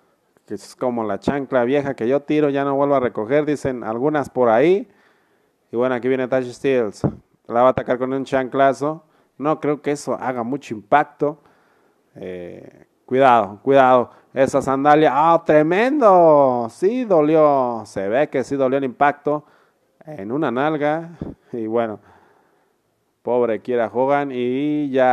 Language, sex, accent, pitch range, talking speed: Spanish, male, Mexican, 120-150 Hz, 155 wpm